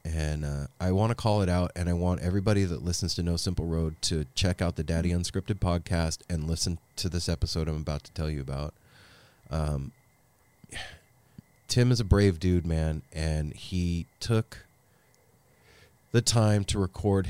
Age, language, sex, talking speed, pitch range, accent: 30-49, English, male, 175 wpm, 80-105 Hz, American